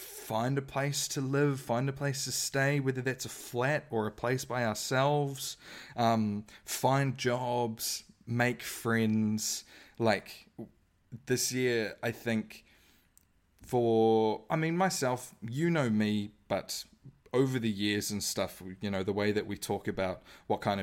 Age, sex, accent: 20-39, male, Australian